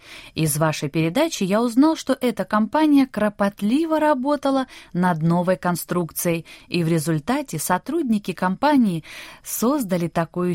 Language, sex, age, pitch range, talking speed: Russian, female, 20-39, 170-270 Hz, 115 wpm